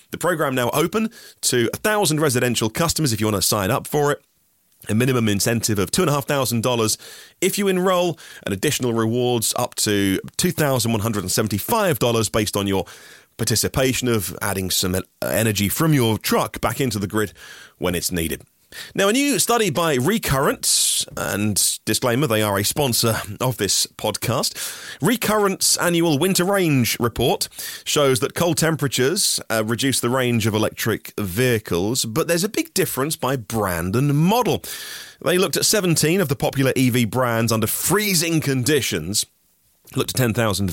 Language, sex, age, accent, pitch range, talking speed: English, male, 30-49, British, 105-155 Hz, 155 wpm